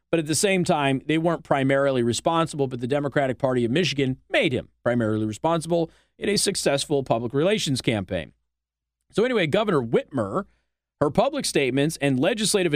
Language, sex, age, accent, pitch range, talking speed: English, male, 40-59, American, 130-185 Hz, 160 wpm